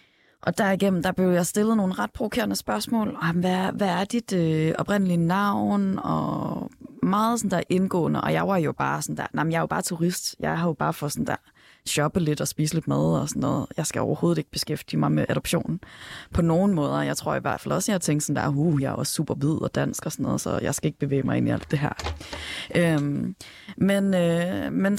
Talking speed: 245 wpm